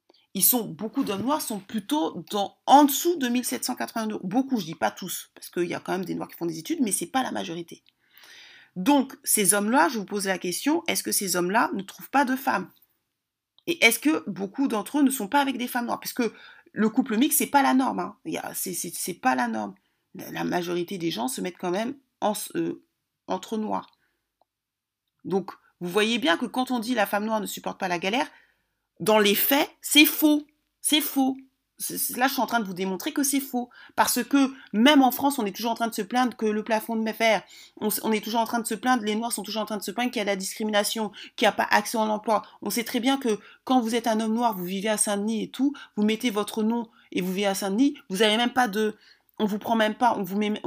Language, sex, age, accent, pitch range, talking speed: French, female, 30-49, French, 205-260 Hz, 260 wpm